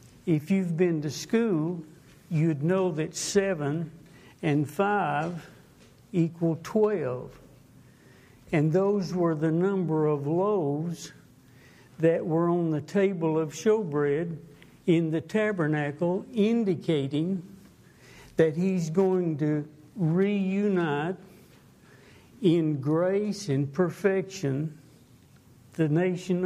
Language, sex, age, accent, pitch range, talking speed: English, male, 60-79, American, 155-185 Hz, 95 wpm